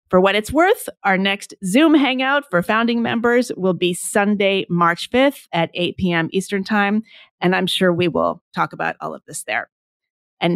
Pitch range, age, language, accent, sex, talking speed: 160-210 Hz, 30-49, English, American, female, 190 wpm